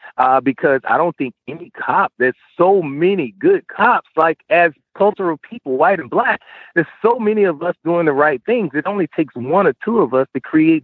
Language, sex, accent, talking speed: English, male, American, 210 wpm